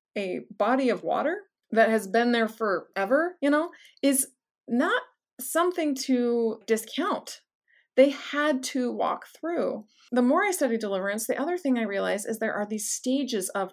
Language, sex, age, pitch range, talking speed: English, female, 30-49, 200-275 Hz, 160 wpm